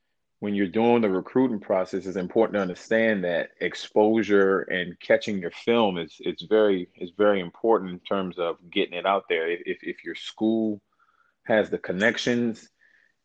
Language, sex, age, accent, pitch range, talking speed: English, male, 30-49, American, 90-105 Hz, 165 wpm